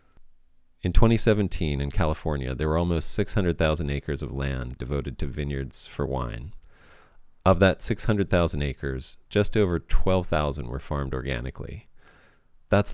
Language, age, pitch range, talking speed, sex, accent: English, 40-59, 75-100 Hz, 125 wpm, male, American